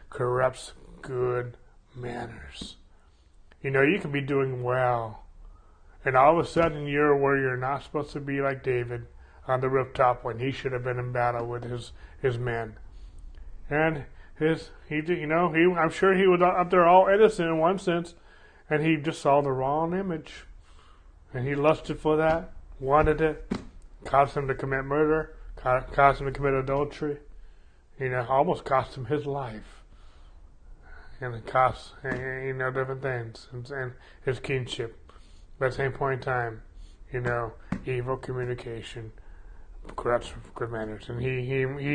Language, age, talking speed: English, 30-49, 165 wpm